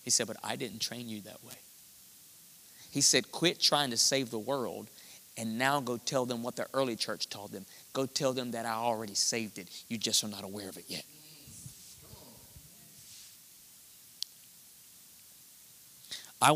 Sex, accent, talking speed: male, American, 165 wpm